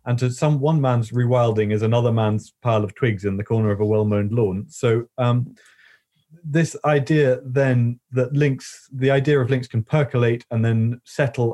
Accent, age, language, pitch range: British, 30-49, English, 110-140 Hz